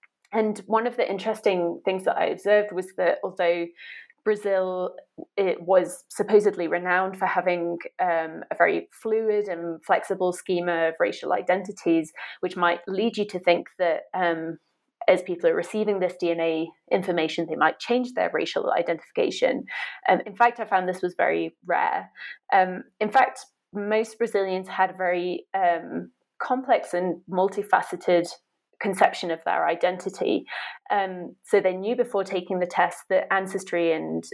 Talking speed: 150 wpm